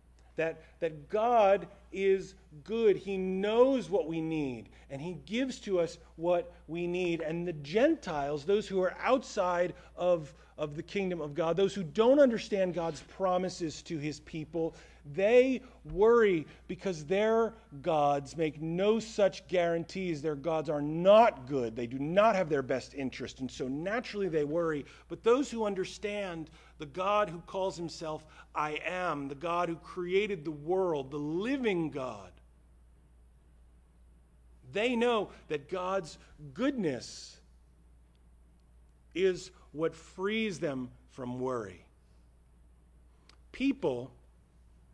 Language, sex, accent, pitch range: English, male, American, 125-195 Hz